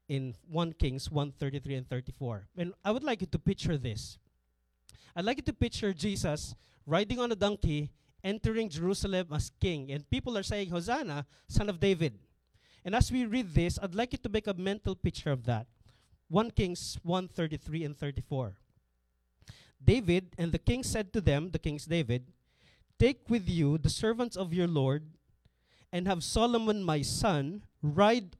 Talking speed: 170 wpm